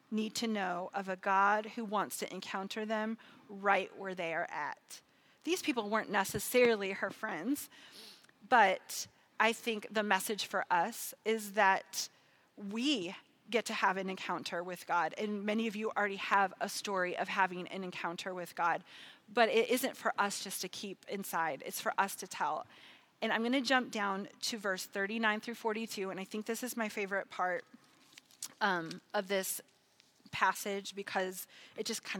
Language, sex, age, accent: English, female, 30-49, American